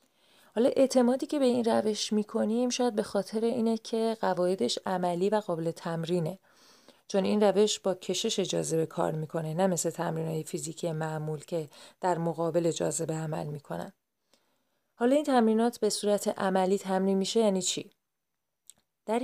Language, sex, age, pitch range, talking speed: Persian, female, 30-49, 175-220 Hz, 155 wpm